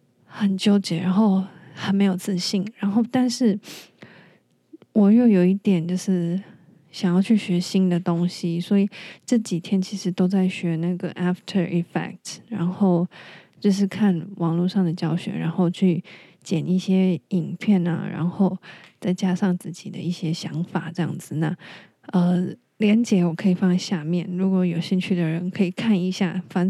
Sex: female